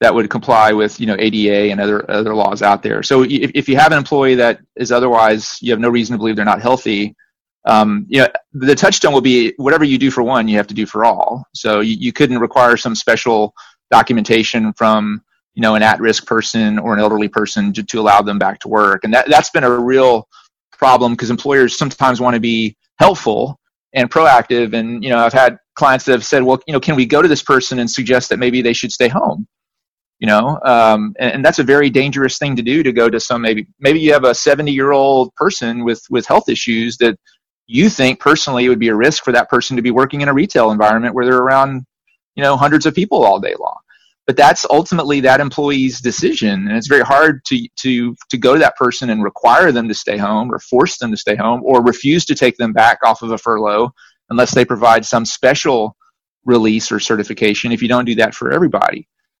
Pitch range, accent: 110-135 Hz, American